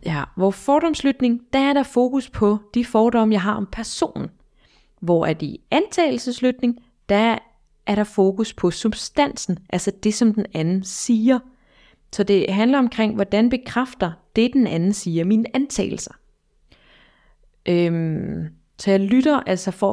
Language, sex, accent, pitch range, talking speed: Danish, female, native, 180-235 Hz, 150 wpm